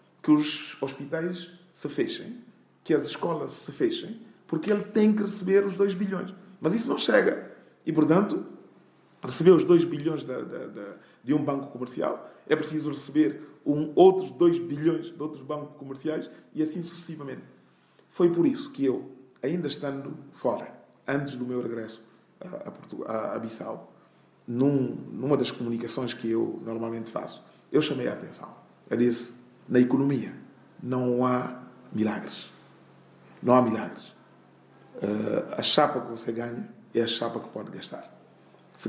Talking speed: 155 wpm